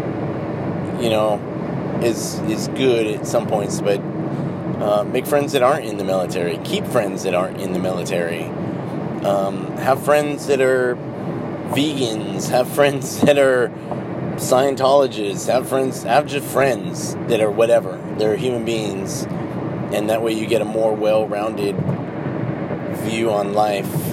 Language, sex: English, male